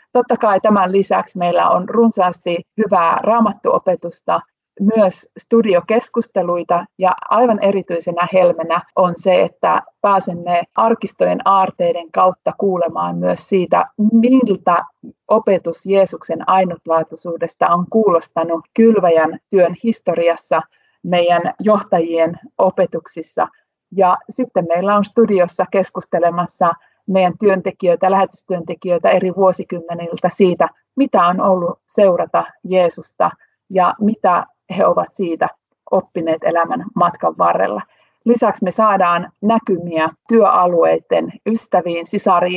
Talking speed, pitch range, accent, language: 100 wpm, 170-205 Hz, native, Finnish